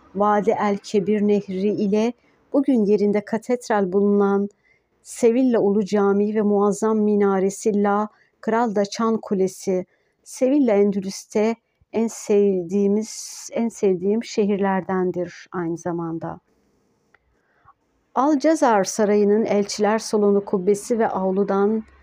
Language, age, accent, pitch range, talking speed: Turkish, 60-79, native, 200-225 Hz, 95 wpm